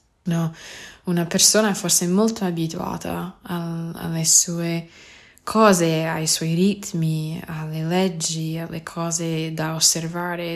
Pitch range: 155-185 Hz